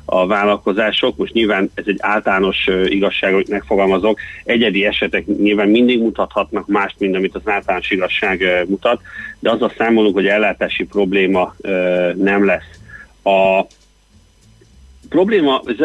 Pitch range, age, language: 100-110 Hz, 40-59, Hungarian